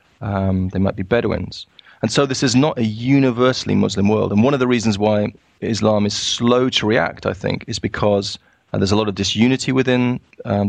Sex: male